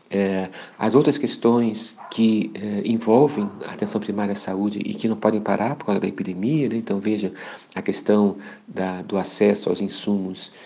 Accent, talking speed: Brazilian, 175 wpm